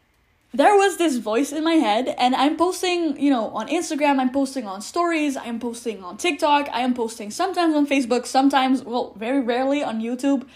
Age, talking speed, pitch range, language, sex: 10-29, 190 wpm, 235-290 Hz, English, female